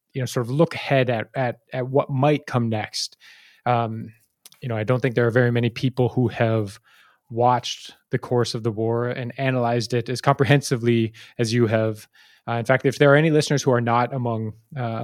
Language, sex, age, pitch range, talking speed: English, male, 20-39, 120-140 Hz, 210 wpm